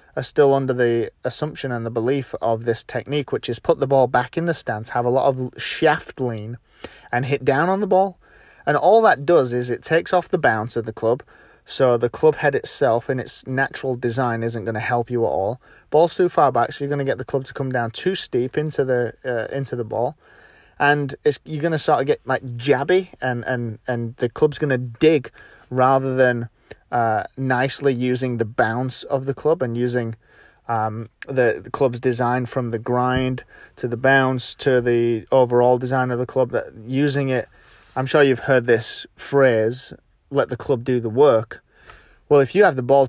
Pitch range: 120-140 Hz